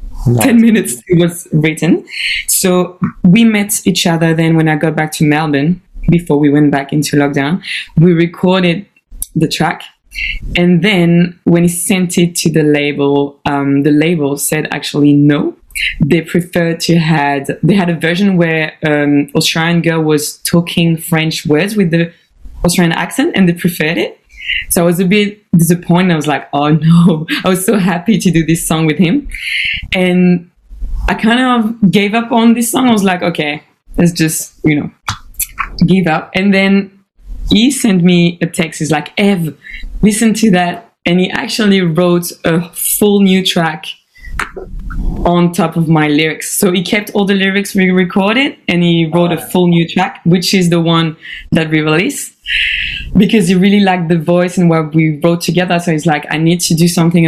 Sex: female